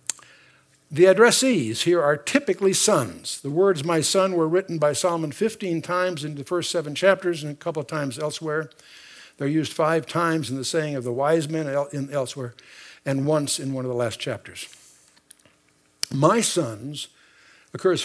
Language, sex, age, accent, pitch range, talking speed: English, male, 60-79, American, 135-180 Hz, 165 wpm